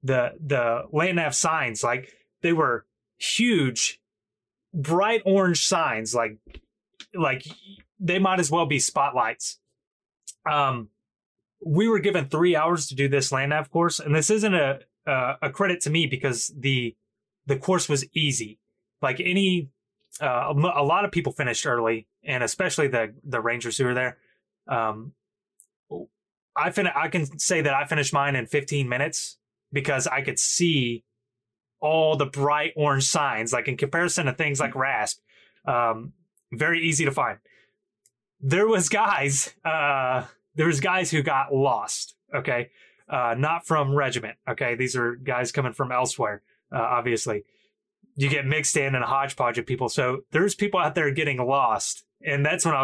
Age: 20-39